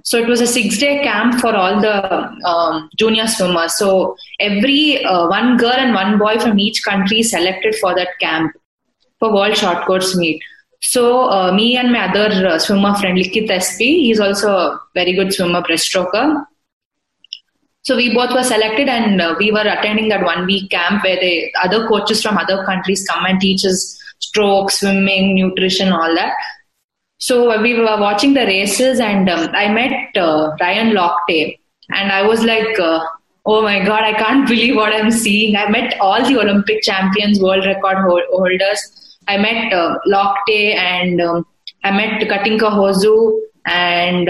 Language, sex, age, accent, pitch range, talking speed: English, female, 20-39, Indian, 190-230 Hz, 170 wpm